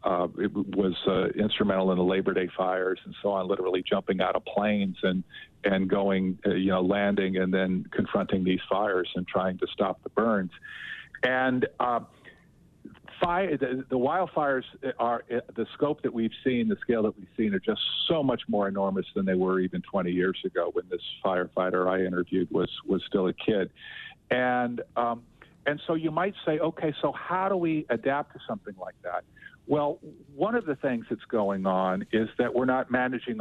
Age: 50-69